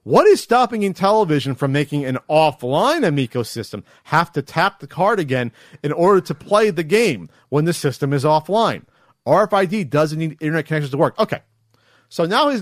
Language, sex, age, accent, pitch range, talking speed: English, male, 40-59, American, 140-190 Hz, 180 wpm